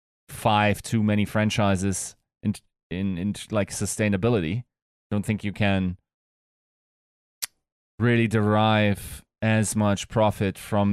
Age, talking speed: 20-39, 105 wpm